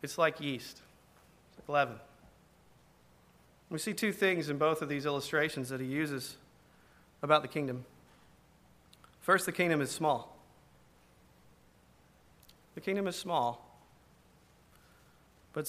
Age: 30-49